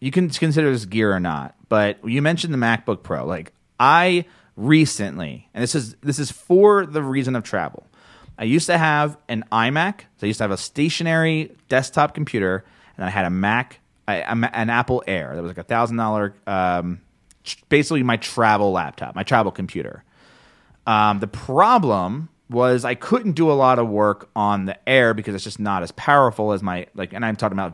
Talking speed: 195 wpm